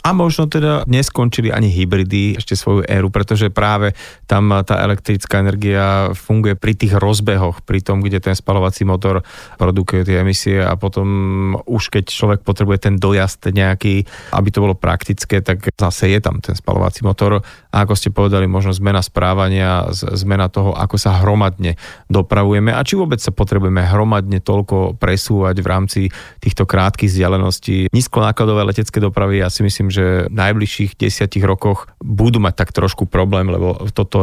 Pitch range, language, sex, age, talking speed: 95-105 Hz, Slovak, male, 30-49, 160 wpm